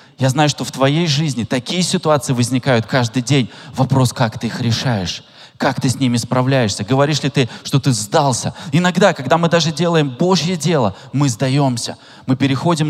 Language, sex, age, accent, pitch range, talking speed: Russian, male, 20-39, native, 110-150 Hz, 175 wpm